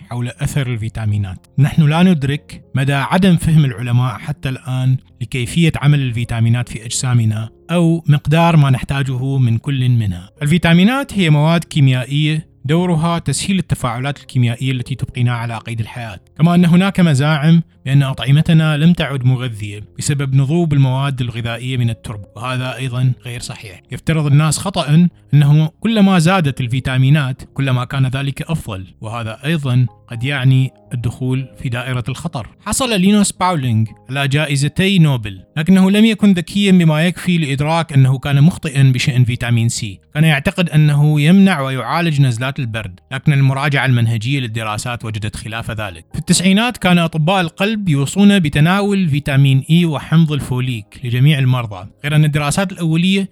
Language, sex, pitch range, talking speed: Arabic, male, 125-165 Hz, 140 wpm